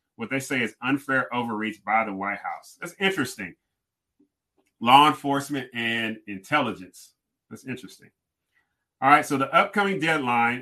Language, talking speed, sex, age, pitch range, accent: English, 135 wpm, male, 30-49, 115-140 Hz, American